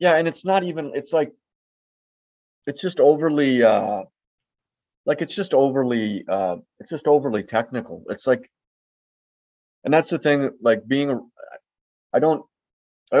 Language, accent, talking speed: English, American, 140 wpm